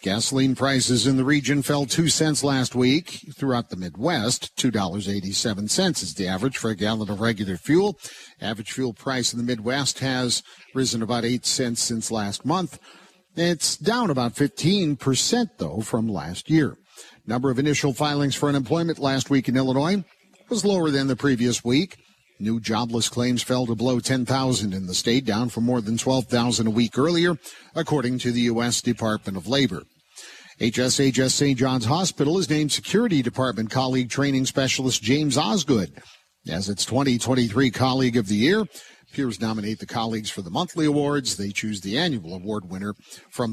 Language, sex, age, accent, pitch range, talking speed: English, male, 50-69, American, 120-145 Hz, 165 wpm